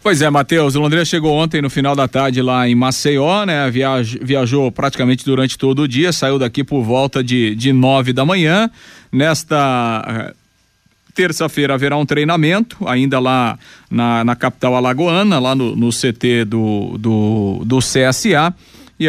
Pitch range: 125-150 Hz